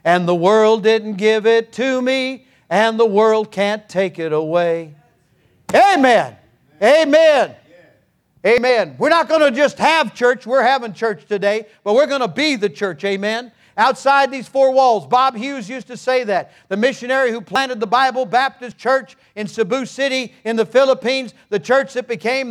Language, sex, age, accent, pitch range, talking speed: English, male, 50-69, American, 175-255 Hz, 175 wpm